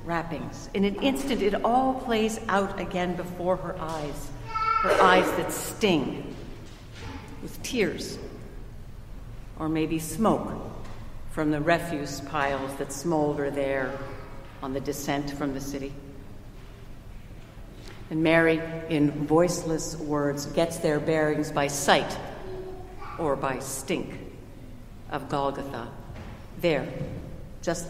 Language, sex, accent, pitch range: English, female, American, 130-165 Hz